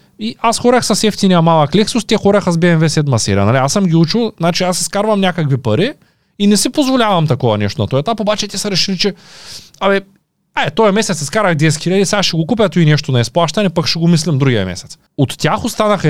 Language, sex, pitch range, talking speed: Bulgarian, male, 130-190 Hz, 225 wpm